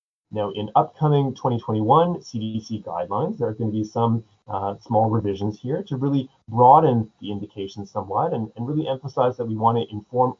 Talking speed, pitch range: 165 wpm, 105-140 Hz